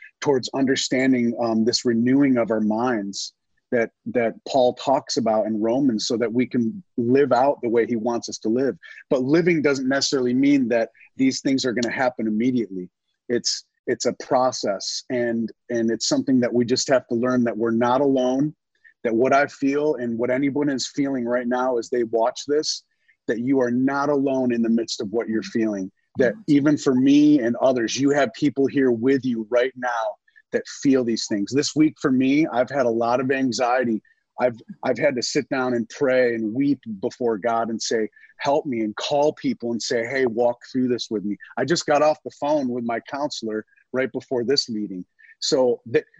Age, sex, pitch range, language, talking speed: 30-49, male, 115-145 Hz, English, 205 wpm